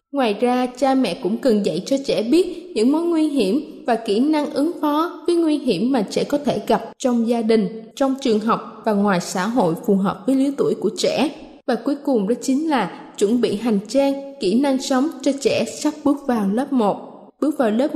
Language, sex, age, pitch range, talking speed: Vietnamese, female, 20-39, 225-290 Hz, 225 wpm